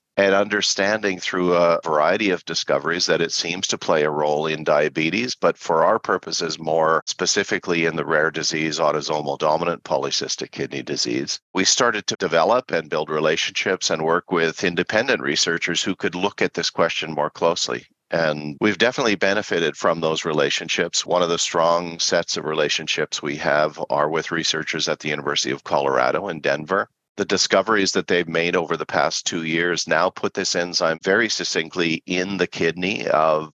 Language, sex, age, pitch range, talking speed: English, male, 50-69, 80-100 Hz, 175 wpm